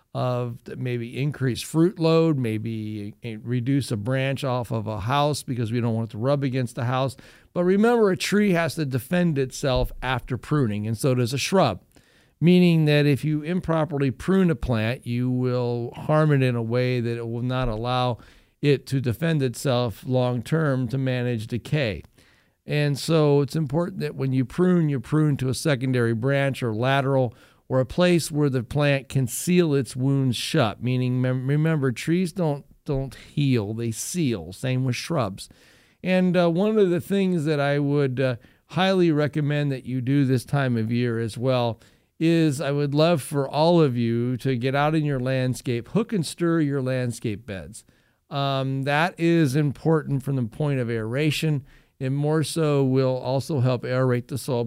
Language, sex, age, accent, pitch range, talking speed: English, male, 50-69, American, 125-150 Hz, 180 wpm